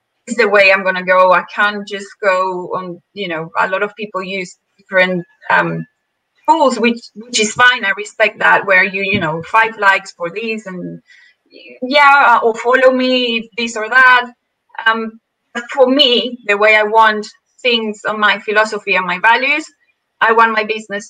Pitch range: 190-250 Hz